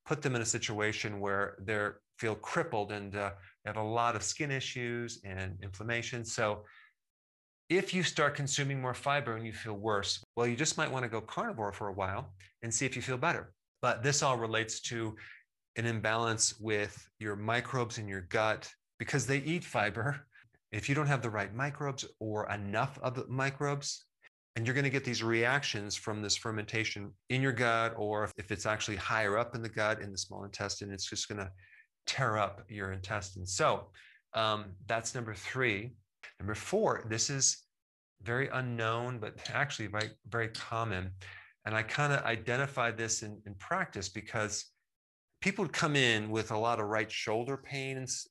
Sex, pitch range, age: male, 105-125 Hz, 30-49